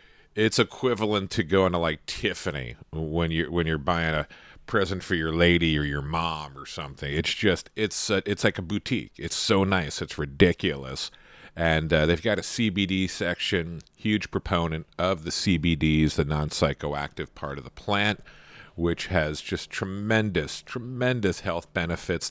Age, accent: 40-59, American